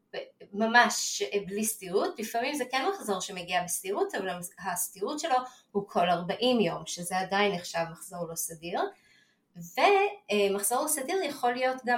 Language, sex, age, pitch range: Hebrew, female, 20-39, 190-255 Hz